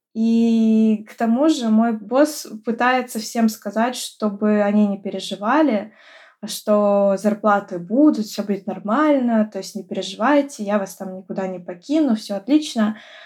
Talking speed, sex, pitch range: 140 wpm, female, 200-230 Hz